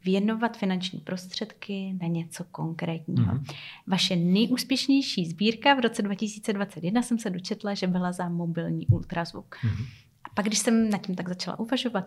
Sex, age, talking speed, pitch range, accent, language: female, 30-49, 145 wpm, 180-210 Hz, native, Czech